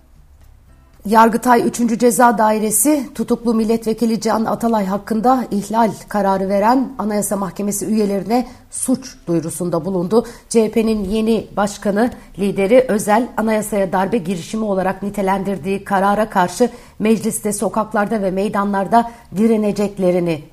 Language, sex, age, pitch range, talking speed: Turkish, female, 60-79, 195-230 Hz, 100 wpm